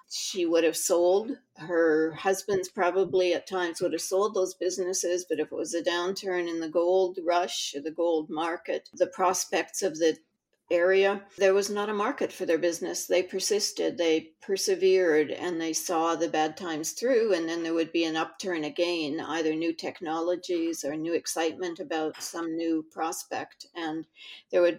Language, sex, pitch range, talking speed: English, female, 160-185 Hz, 175 wpm